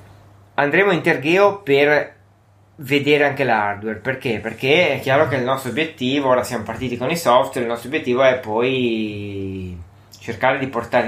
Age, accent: 20-39, native